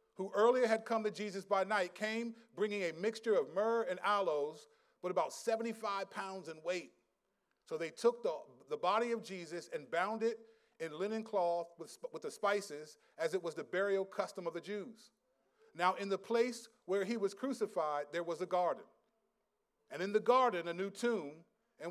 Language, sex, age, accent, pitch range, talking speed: English, male, 40-59, American, 175-230 Hz, 190 wpm